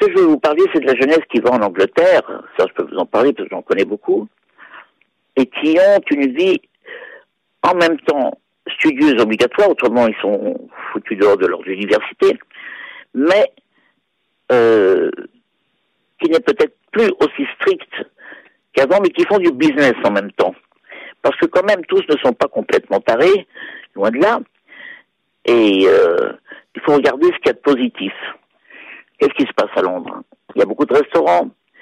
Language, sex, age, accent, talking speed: French, male, 60-79, French, 180 wpm